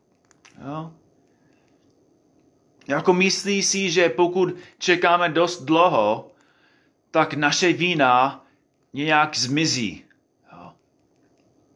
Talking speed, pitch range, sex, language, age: 75 wpm, 145-185 Hz, male, Czech, 30-49